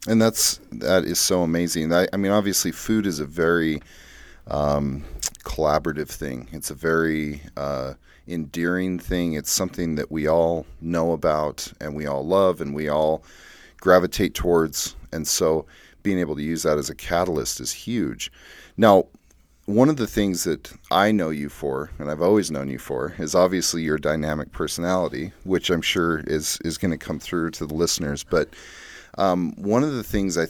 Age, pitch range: 30-49, 75-95 Hz